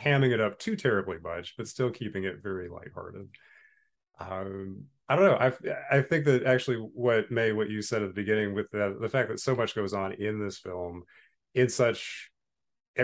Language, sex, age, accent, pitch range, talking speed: English, male, 30-49, American, 95-115 Hz, 205 wpm